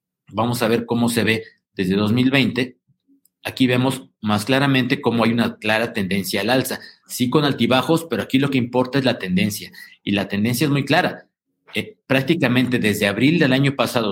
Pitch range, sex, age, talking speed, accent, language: 105-130 Hz, male, 50-69, 185 wpm, Mexican, Spanish